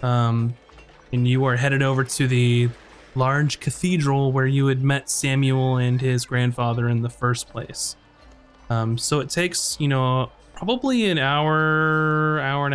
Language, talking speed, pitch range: English, 155 wpm, 125-145 Hz